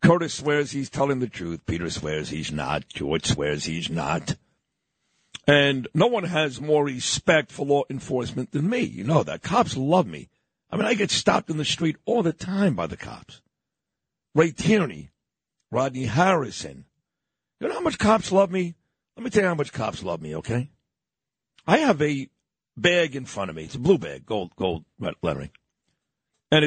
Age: 60-79